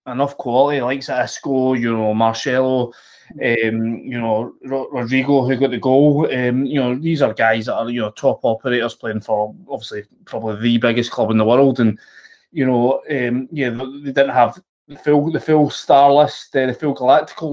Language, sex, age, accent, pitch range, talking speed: English, male, 20-39, British, 120-150 Hz, 185 wpm